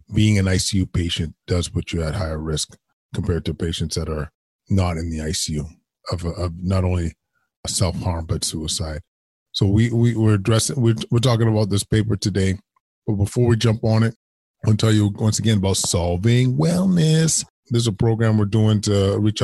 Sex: male